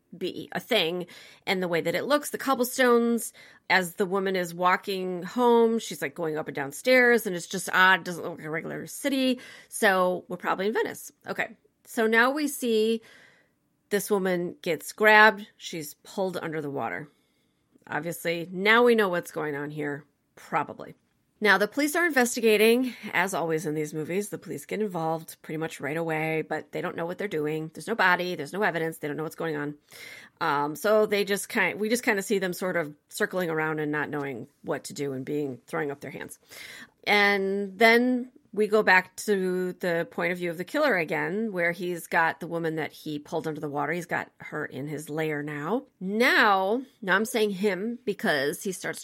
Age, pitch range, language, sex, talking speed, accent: 30-49, 155-215 Hz, English, female, 200 wpm, American